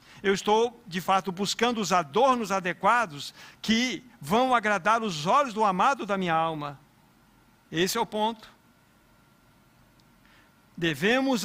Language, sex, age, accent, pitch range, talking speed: Portuguese, male, 60-79, Brazilian, 155-205 Hz, 120 wpm